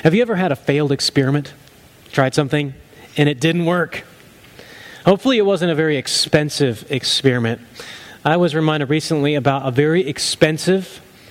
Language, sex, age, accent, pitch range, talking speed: English, male, 30-49, American, 140-180 Hz, 150 wpm